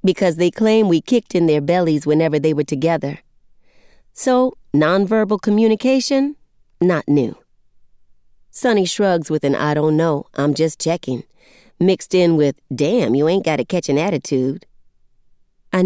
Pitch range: 145-195 Hz